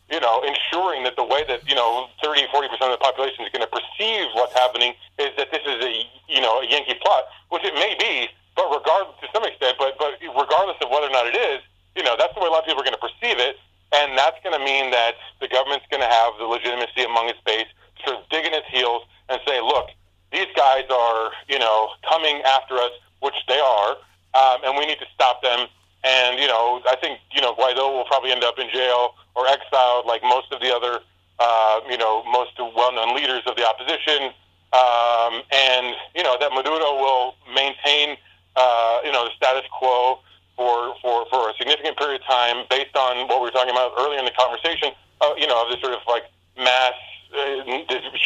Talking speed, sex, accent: 225 wpm, male, American